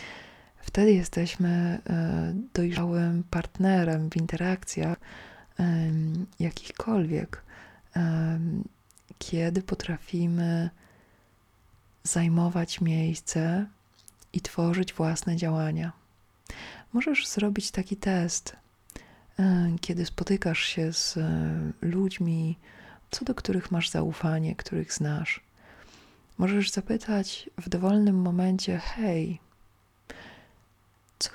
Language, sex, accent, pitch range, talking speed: Polish, female, native, 160-190 Hz, 75 wpm